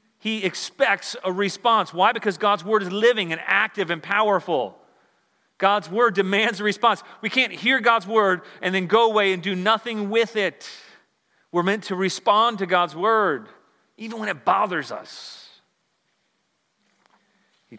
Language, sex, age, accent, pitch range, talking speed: English, male, 40-59, American, 150-215 Hz, 155 wpm